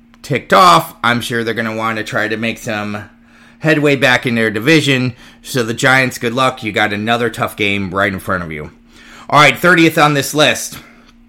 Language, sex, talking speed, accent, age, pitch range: English, male, 205 wpm, American, 30-49, 110-140 Hz